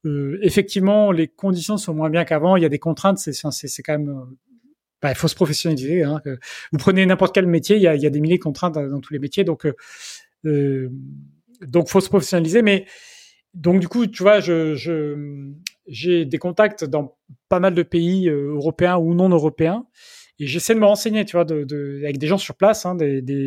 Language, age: French, 30-49